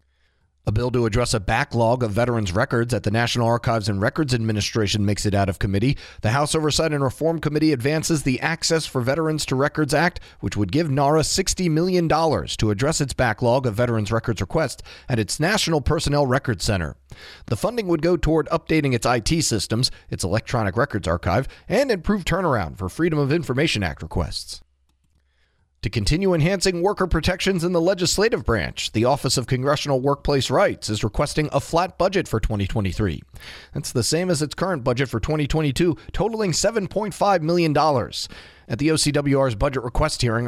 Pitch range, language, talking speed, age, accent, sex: 110-155 Hz, English, 175 wpm, 40-59, American, male